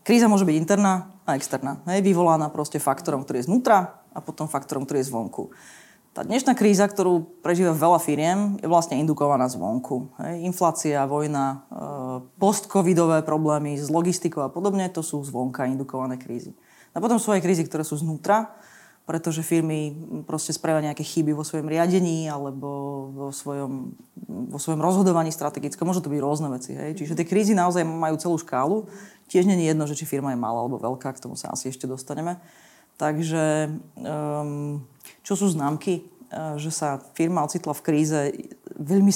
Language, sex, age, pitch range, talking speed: Slovak, female, 20-39, 140-180 Hz, 165 wpm